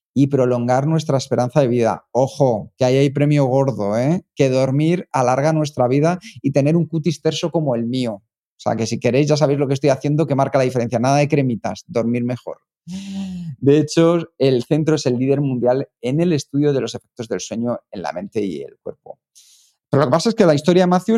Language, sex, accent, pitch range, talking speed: Spanish, male, Spanish, 125-170 Hz, 220 wpm